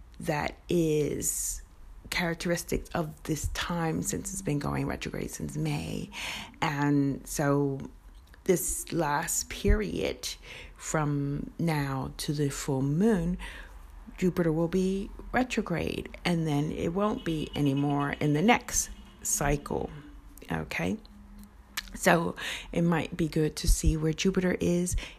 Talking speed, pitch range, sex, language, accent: 115 wpm, 140-175 Hz, female, English, American